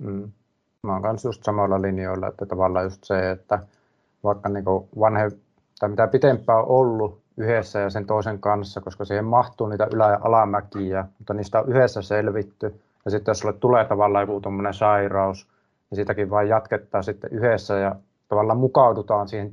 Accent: native